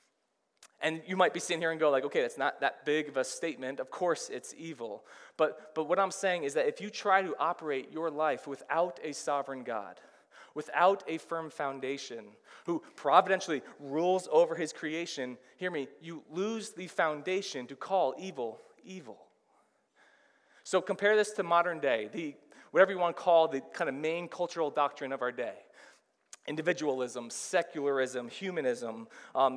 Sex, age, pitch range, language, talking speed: male, 20-39, 145-185 Hz, English, 170 wpm